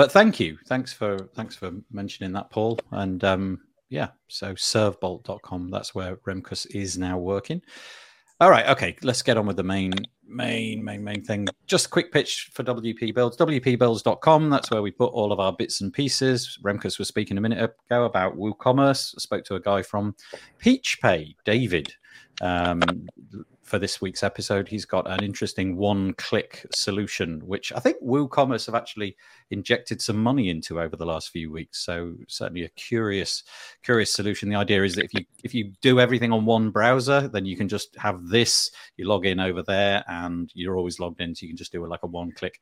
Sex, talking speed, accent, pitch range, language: male, 195 wpm, British, 95-125 Hz, English